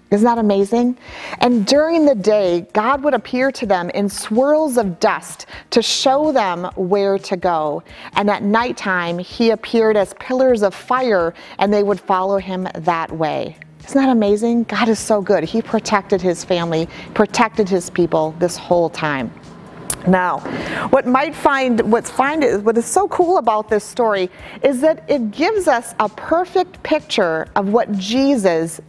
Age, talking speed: 30-49, 165 wpm